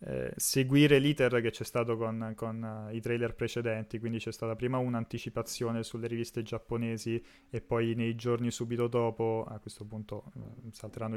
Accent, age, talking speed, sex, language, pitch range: native, 20-39, 155 wpm, male, Italian, 110-120 Hz